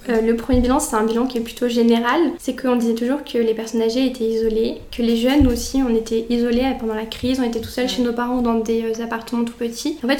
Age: 20-39